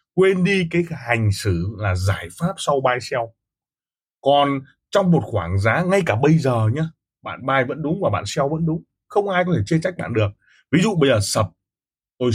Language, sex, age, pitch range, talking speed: Vietnamese, male, 20-39, 105-165 Hz, 215 wpm